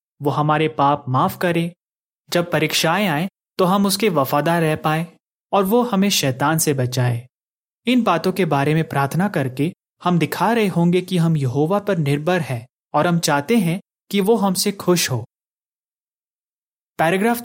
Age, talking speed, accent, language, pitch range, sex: 30-49, 160 wpm, native, Hindi, 145-195 Hz, male